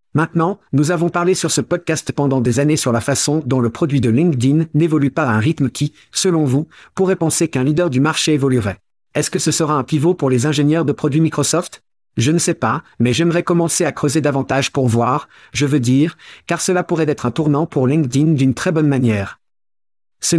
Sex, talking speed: male, 215 wpm